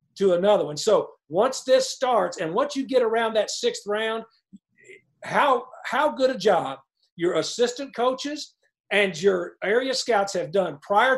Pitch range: 180-220 Hz